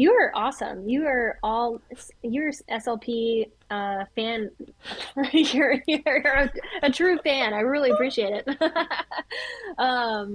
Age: 10-29